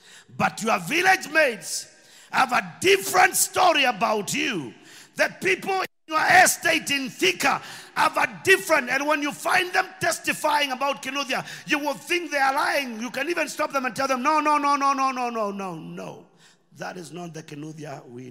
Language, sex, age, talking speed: English, male, 50-69, 185 wpm